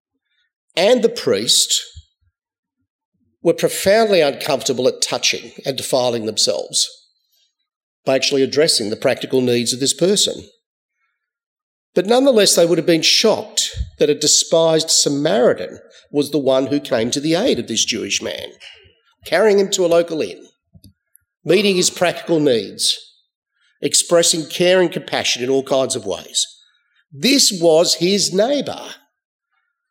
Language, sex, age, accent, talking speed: English, male, 50-69, Australian, 130 wpm